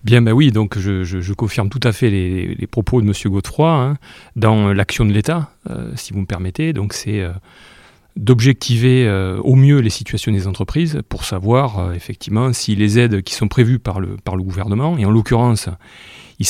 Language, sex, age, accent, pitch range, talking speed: French, male, 30-49, French, 100-125 Hz, 205 wpm